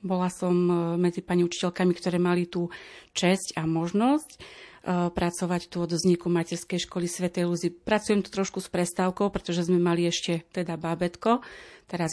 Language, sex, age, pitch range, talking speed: Slovak, female, 30-49, 170-195 Hz, 155 wpm